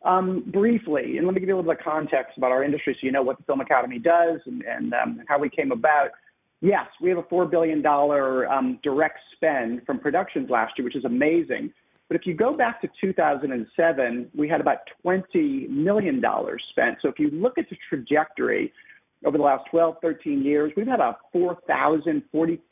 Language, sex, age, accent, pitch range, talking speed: English, male, 40-59, American, 145-235 Hz, 200 wpm